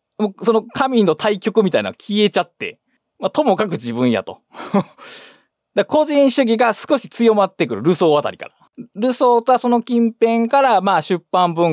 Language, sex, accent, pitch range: Japanese, male, native, 150-230 Hz